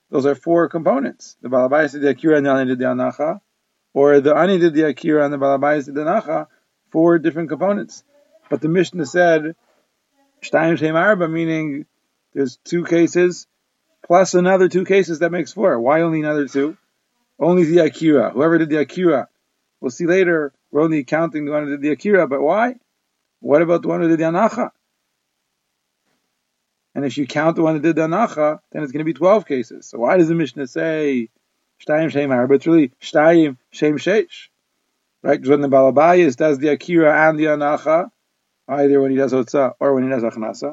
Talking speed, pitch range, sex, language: 190 wpm, 140-170 Hz, male, English